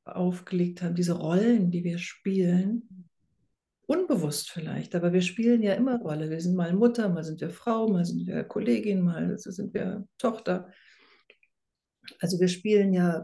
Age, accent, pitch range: 60-79, German, 175-200 Hz